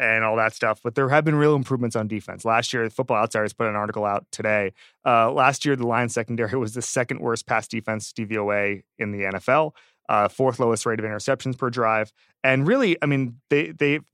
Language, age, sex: English, 30-49, male